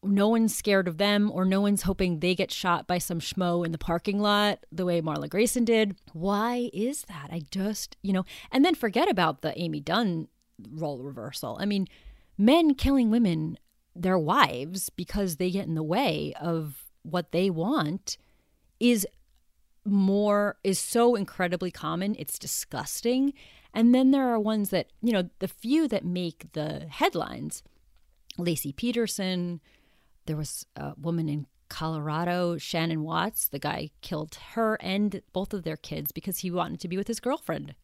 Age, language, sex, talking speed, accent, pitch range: 30-49, English, female, 170 wpm, American, 160-205 Hz